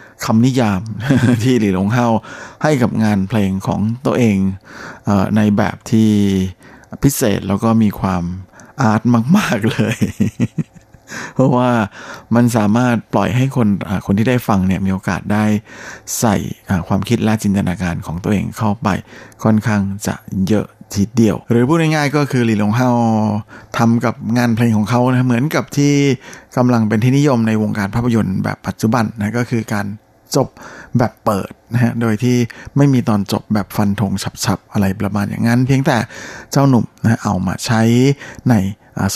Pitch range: 100-120 Hz